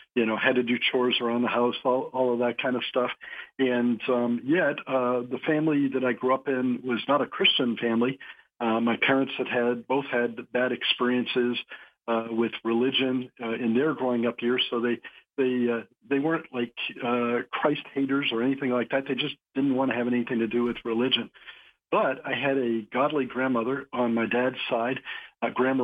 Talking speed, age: 195 wpm, 50-69